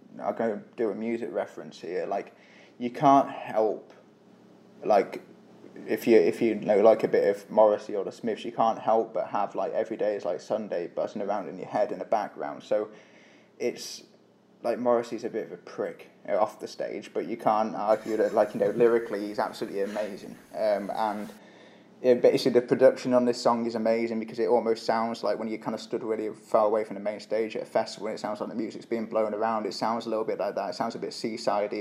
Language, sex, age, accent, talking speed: English, male, 20-39, British, 230 wpm